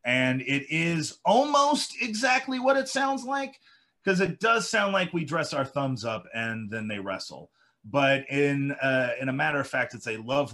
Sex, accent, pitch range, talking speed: male, American, 110-150 Hz, 195 wpm